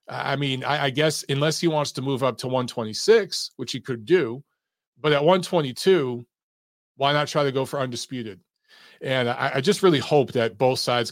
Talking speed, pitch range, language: 195 wpm, 120-155 Hz, English